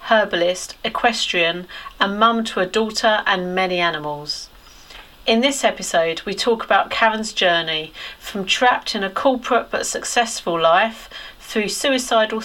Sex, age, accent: female, 40-59, British